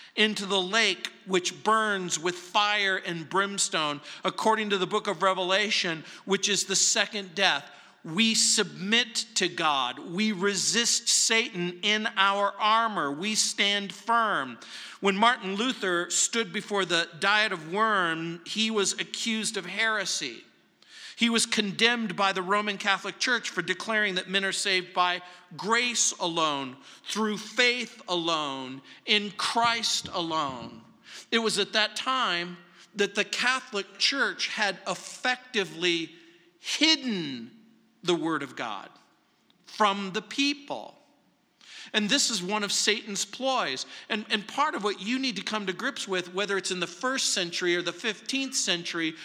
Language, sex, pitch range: English, male, 185-230 Hz